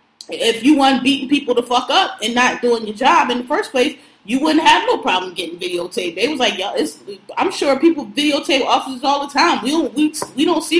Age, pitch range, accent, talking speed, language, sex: 20-39, 225-285 Hz, American, 250 wpm, English, female